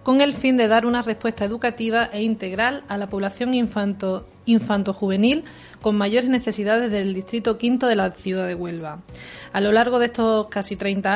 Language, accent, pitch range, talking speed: Spanish, Spanish, 195-240 Hz, 170 wpm